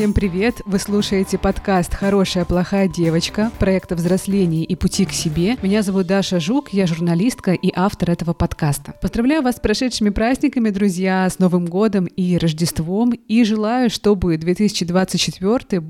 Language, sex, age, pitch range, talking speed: Russian, female, 20-39, 175-210 Hz, 145 wpm